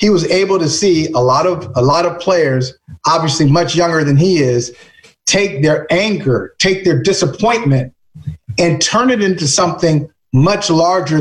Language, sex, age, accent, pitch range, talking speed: English, male, 30-49, American, 145-190 Hz, 165 wpm